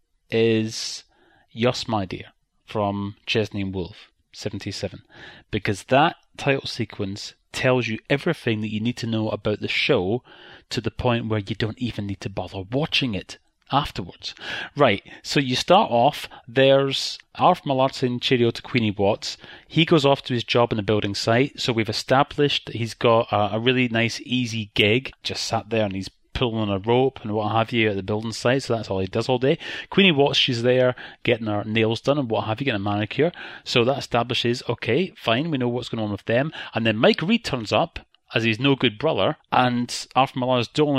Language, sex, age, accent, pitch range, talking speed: English, male, 30-49, British, 110-135 Hz, 200 wpm